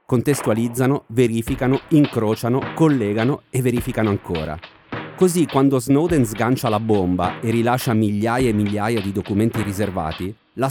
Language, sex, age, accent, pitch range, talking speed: Italian, male, 30-49, native, 105-135 Hz, 125 wpm